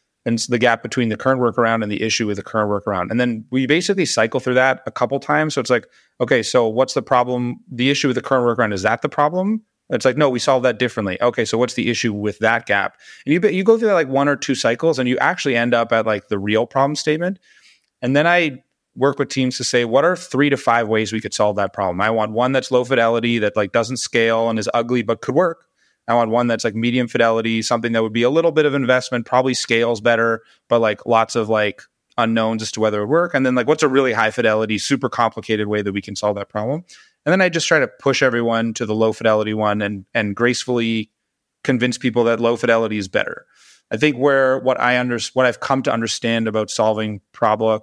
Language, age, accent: English, 30-49, American